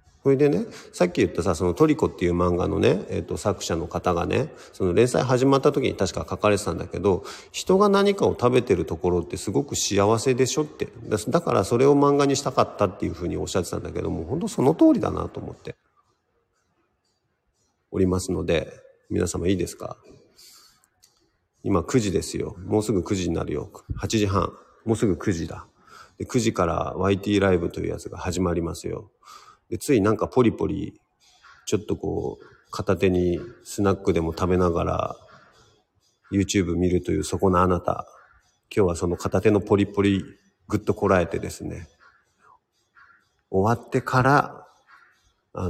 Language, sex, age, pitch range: Japanese, male, 40-59, 90-110 Hz